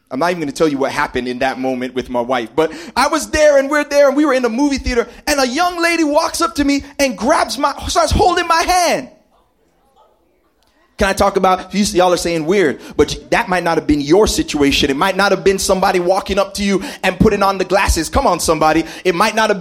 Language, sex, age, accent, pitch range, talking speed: English, male, 30-49, American, 200-275 Hz, 255 wpm